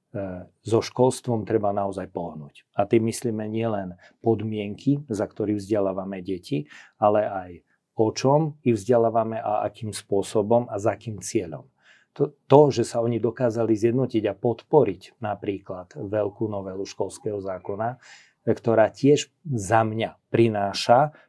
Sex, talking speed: male, 130 wpm